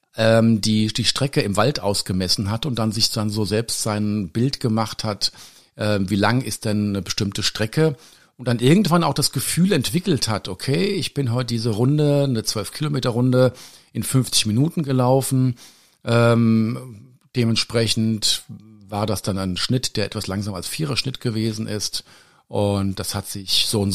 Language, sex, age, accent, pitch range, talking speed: German, male, 50-69, German, 105-130 Hz, 165 wpm